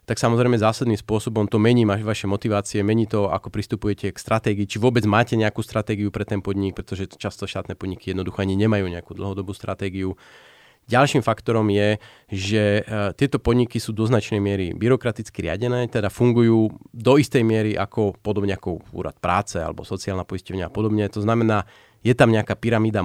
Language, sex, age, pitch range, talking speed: Slovak, male, 30-49, 100-120 Hz, 170 wpm